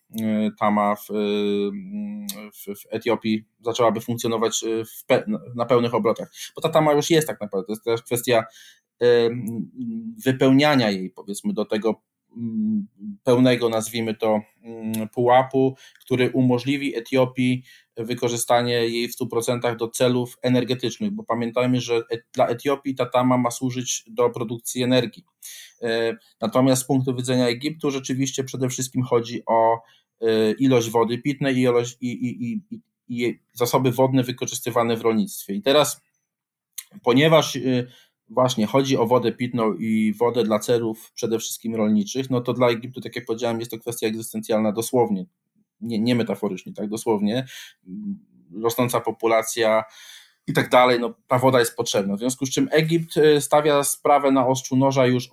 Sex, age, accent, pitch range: male, 20-39, Polish, 115-135 Hz